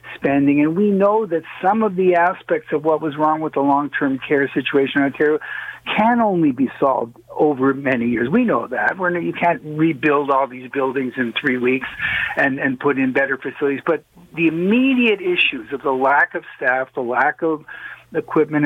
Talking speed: 185 wpm